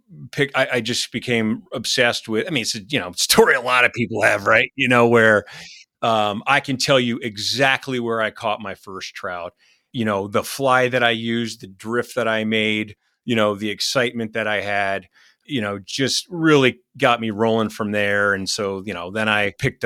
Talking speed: 210 wpm